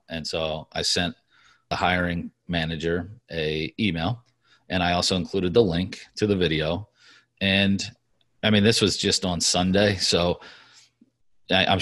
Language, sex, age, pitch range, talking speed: English, male, 30-49, 90-105 Hz, 140 wpm